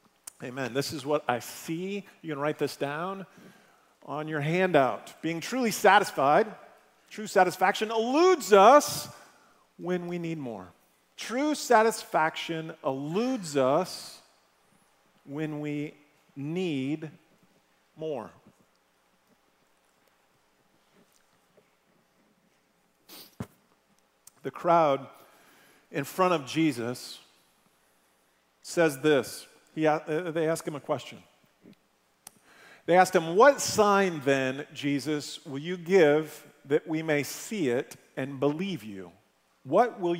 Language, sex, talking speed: English, male, 100 wpm